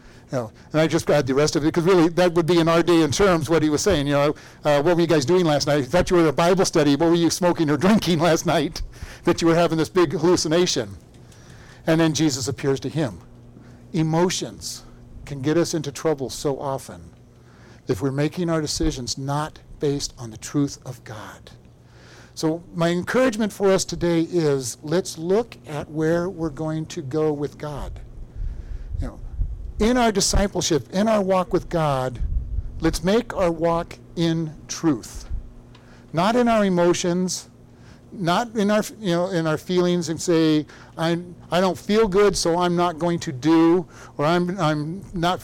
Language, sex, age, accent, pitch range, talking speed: English, male, 60-79, American, 145-180 Hz, 185 wpm